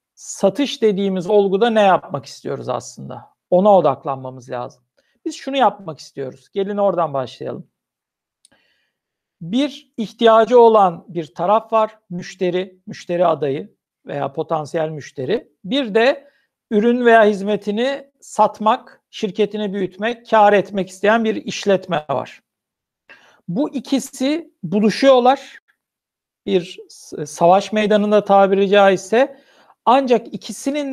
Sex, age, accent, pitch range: male, 60-79, native, 195-245 Hz